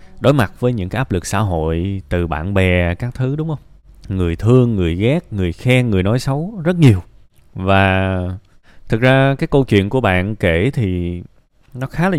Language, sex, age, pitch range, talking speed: Vietnamese, male, 20-39, 90-120 Hz, 195 wpm